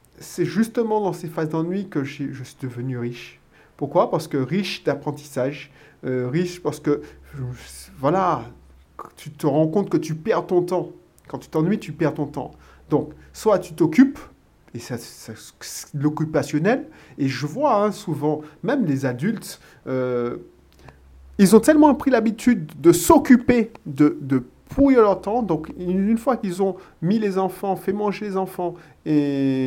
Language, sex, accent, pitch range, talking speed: French, male, French, 135-185 Hz, 165 wpm